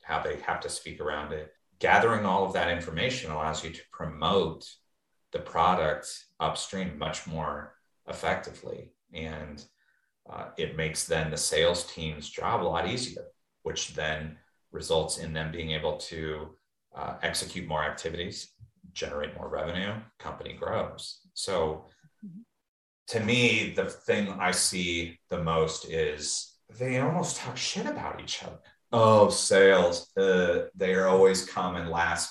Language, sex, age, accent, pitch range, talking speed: English, male, 30-49, American, 80-100 Hz, 140 wpm